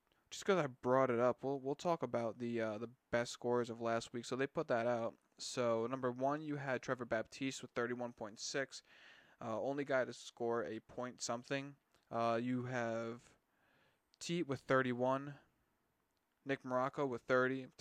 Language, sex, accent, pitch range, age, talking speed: English, male, American, 120-135 Hz, 20-39, 180 wpm